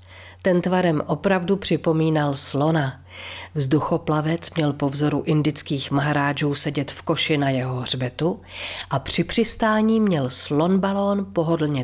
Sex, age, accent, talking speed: female, 40-59, native, 120 wpm